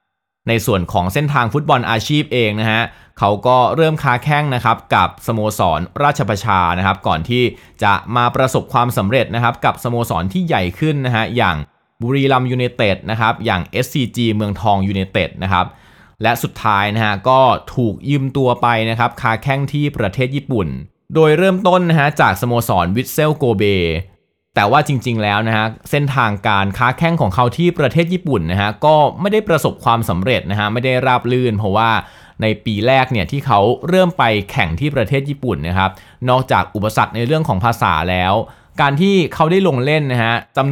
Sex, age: male, 20-39